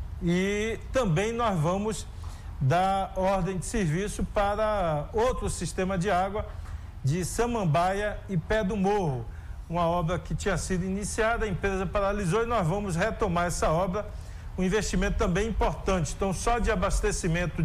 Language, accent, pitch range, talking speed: Portuguese, Brazilian, 165-205 Hz, 145 wpm